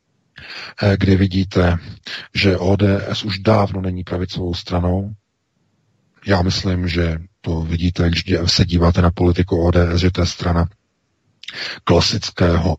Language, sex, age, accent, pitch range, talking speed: Czech, male, 40-59, native, 85-95 Hz, 115 wpm